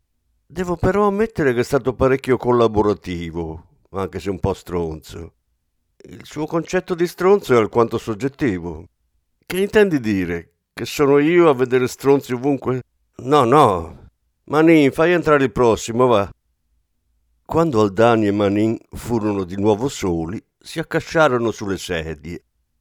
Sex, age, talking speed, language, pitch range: male, 50-69, 135 wpm, Italian, 85-135 Hz